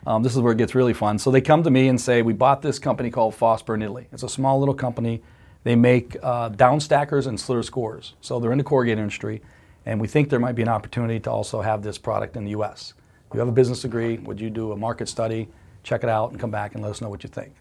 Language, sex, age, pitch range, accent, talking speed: English, male, 40-59, 105-125 Hz, American, 285 wpm